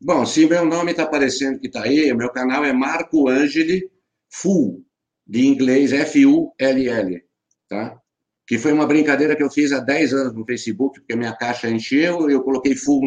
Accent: Brazilian